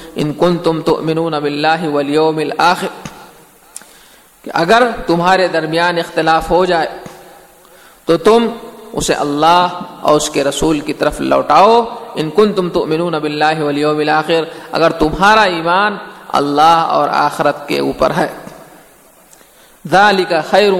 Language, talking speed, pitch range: Urdu, 120 wpm, 155-180 Hz